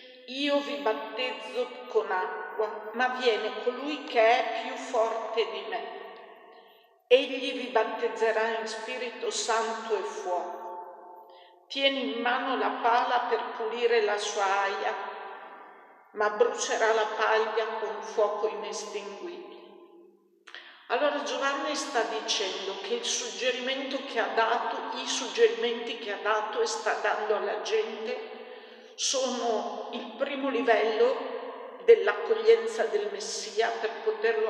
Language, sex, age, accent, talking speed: Italian, female, 50-69, native, 120 wpm